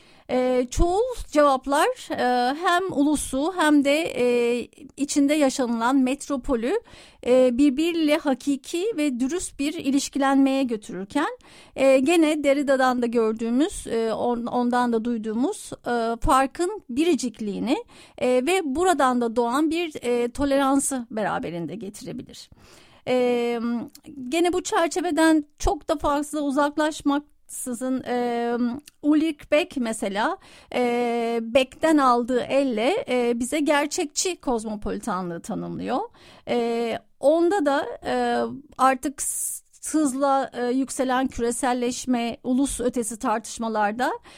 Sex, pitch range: female, 240-300 Hz